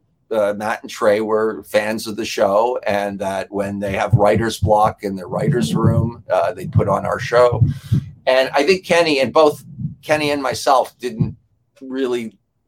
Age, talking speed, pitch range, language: 50-69, 175 wpm, 110-130 Hz, English